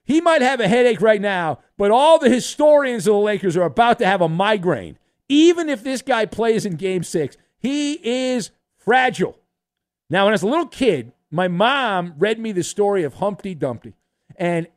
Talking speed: 195 wpm